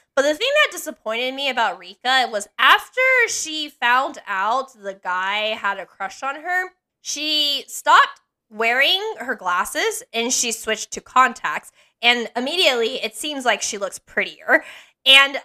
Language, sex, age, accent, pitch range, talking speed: English, female, 10-29, American, 215-290 Hz, 150 wpm